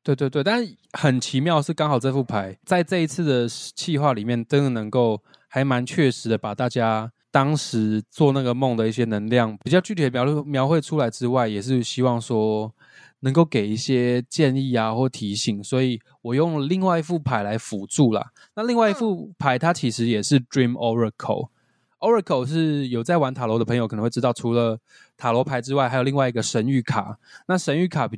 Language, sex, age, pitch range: Chinese, male, 20-39, 115-150 Hz